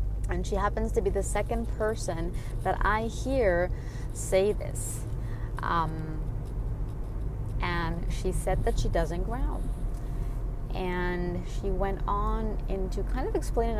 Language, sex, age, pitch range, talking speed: English, female, 20-39, 120-185 Hz, 125 wpm